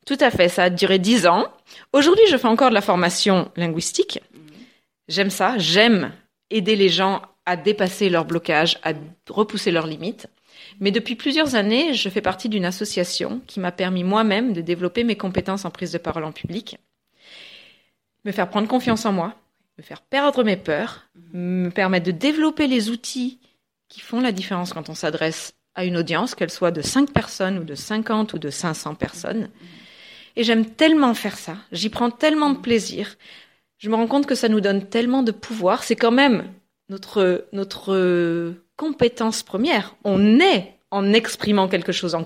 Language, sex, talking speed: French, female, 180 wpm